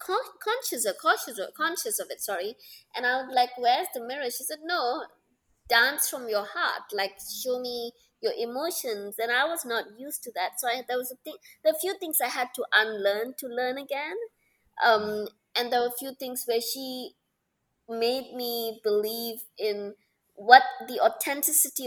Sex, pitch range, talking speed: female, 195-250 Hz, 185 wpm